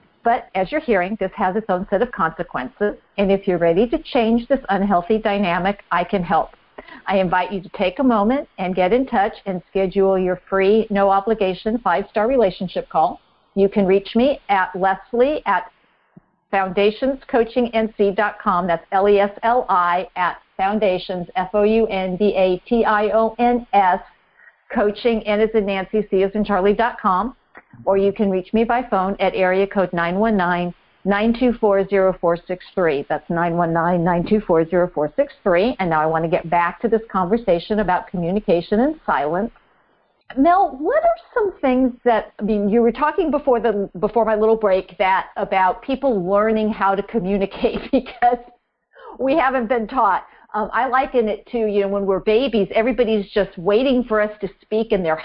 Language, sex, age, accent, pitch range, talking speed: English, female, 50-69, American, 185-235 Hz, 170 wpm